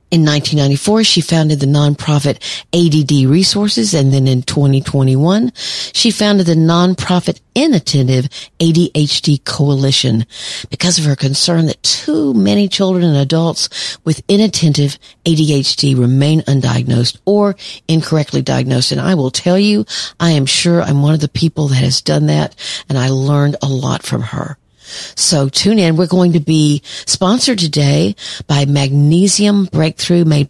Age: 50-69